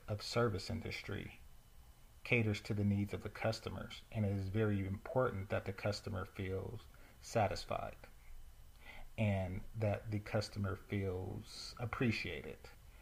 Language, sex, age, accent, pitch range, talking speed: English, male, 40-59, American, 95-115 Hz, 120 wpm